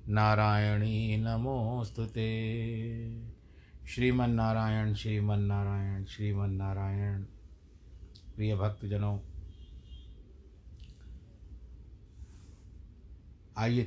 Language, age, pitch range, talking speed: Hindi, 60-79, 85-110 Hz, 45 wpm